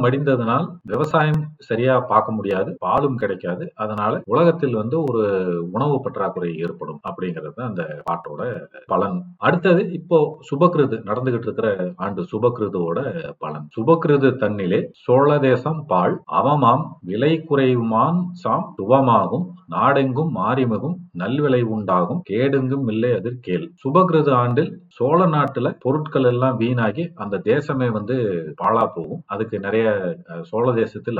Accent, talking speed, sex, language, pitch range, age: native, 75 wpm, male, Tamil, 110-160 Hz, 40-59